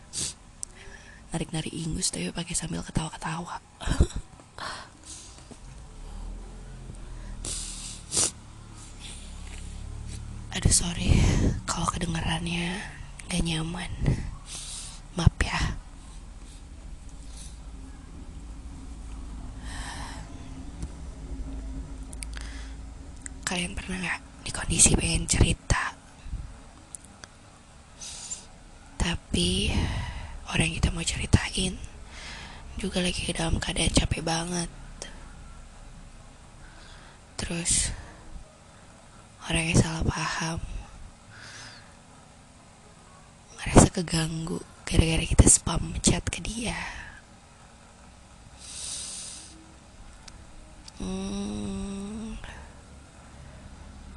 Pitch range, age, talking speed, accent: 70-105 Hz, 20-39, 55 wpm, native